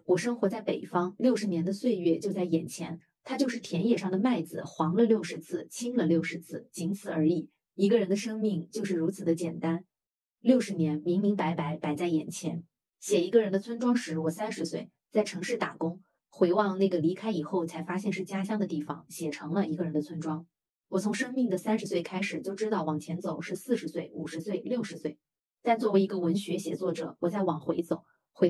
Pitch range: 165-205 Hz